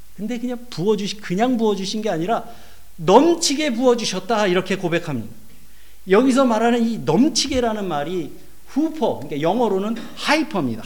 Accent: native